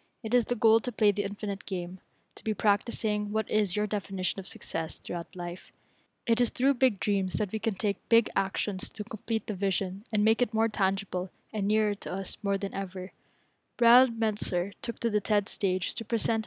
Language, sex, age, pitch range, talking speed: English, female, 10-29, 185-220 Hz, 205 wpm